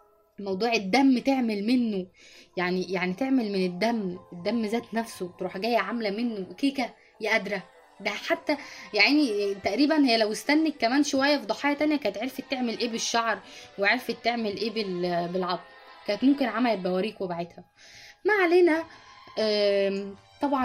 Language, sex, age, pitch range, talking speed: Arabic, female, 20-39, 195-240 Hz, 135 wpm